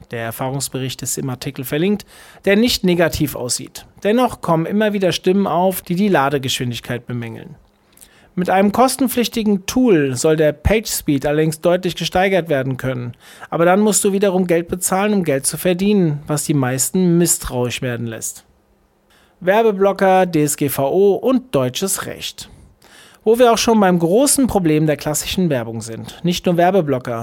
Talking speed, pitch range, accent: 150 wpm, 140-190 Hz, German